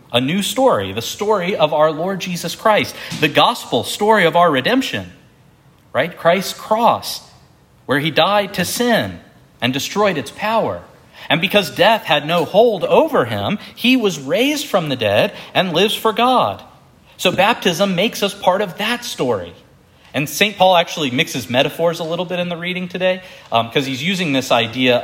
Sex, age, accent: male, 40-59, American